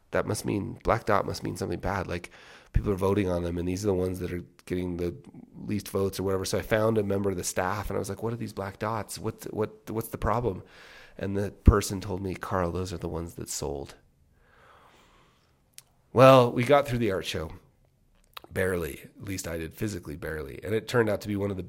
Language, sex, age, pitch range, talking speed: English, male, 30-49, 90-110 Hz, 235 wpm